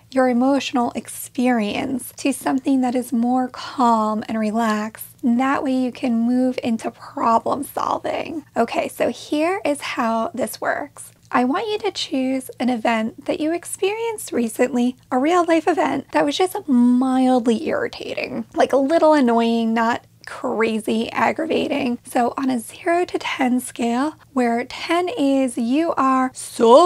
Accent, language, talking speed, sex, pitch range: American, English, 145 wpm, female, 235-295 Hz